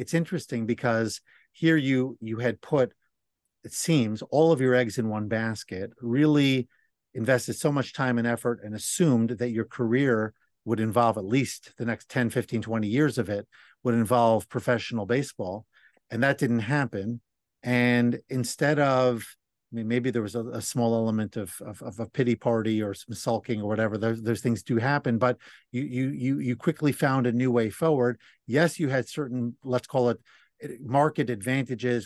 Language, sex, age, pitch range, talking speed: English, male, 50-69, 115-135 Hz, 180 wpm